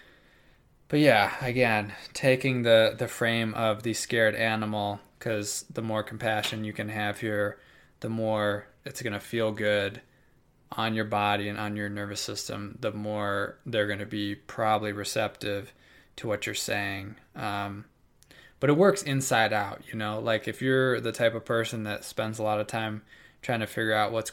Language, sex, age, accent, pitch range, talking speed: English, male, 20-39, American, 105-120 Hz, 175 wpm